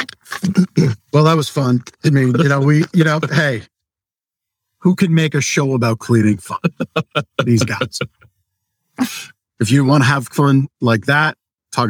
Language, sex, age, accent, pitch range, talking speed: English, male, 50-69, American, 110-145 Hz, 155 wpm